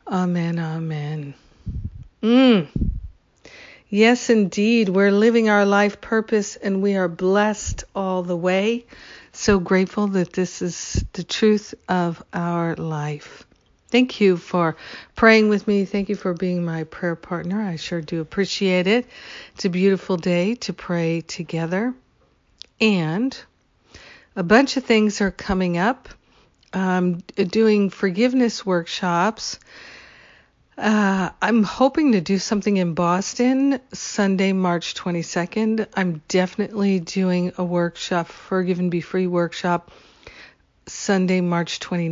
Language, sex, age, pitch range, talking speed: English, female, 60-79, 175-210 Hz, 125 wpm